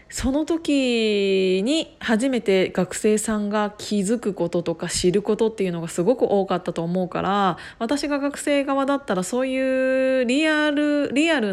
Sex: female